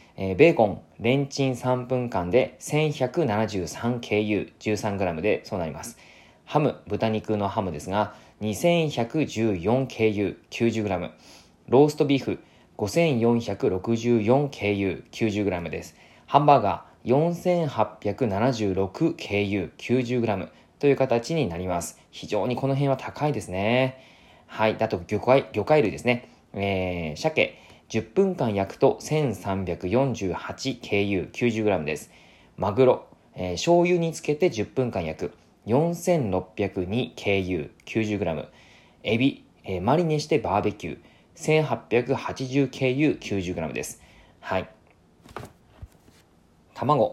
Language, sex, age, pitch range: Japanese, male, 20-39, 100-135 Hz